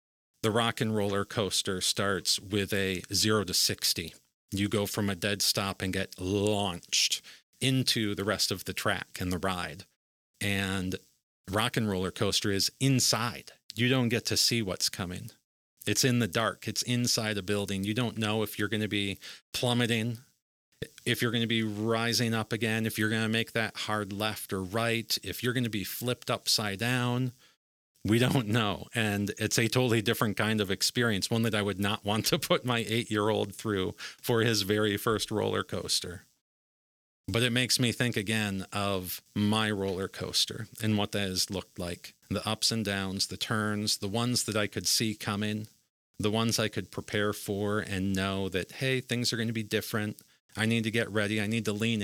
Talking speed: 195 wpm